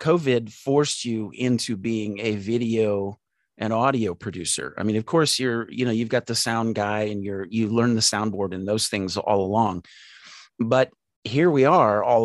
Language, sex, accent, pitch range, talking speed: English, male, American, 100-120 Hz, 185 wpm